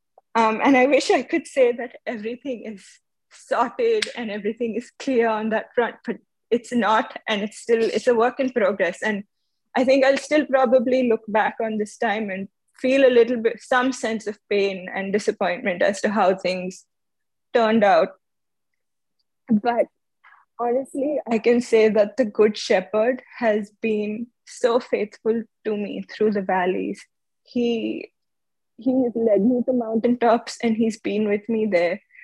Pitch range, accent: 205-240 Hz, Indian